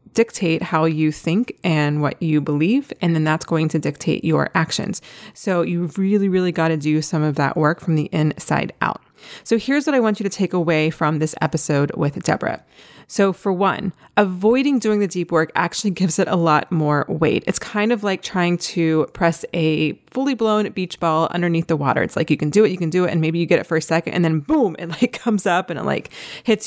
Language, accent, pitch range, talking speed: English, American, 160-200 Hz, 230 wpm